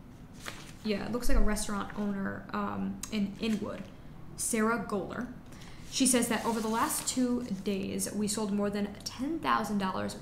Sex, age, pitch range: female, 10-29, 200-225 Hz